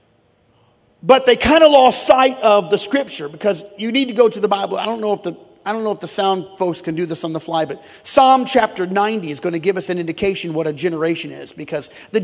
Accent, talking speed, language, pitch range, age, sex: American, 255 wpm, English, 165-220 Hz, 40-59, male